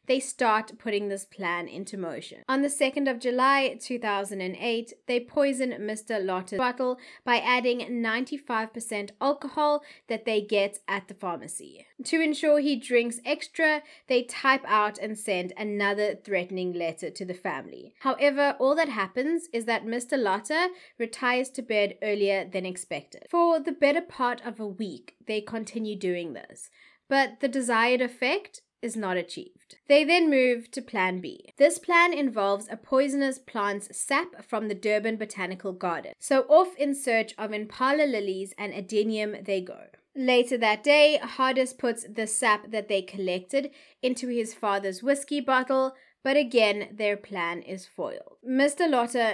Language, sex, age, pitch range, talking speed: English, female, 20-39, 205-275 Hz, 155 wpm